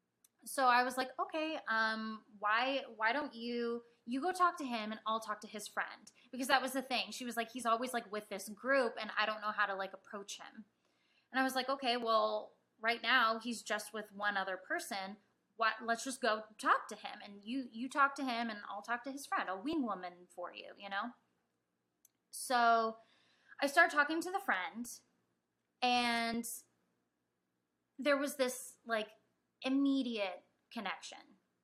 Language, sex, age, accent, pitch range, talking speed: English, female, 10-29, American, 200-255 Hz, 185 wpm